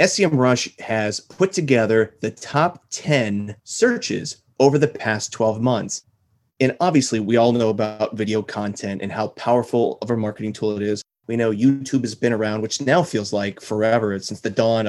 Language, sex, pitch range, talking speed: English, male, 105-135 Hz, 180 wpm